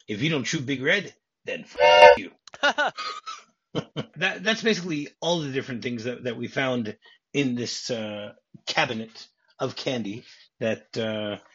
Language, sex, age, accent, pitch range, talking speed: English, male, 30-49, American, 115-145 Hz, 140 wpm